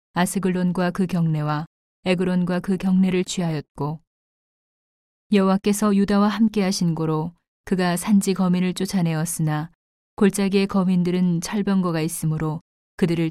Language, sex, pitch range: Korean, female, 160-190 Hz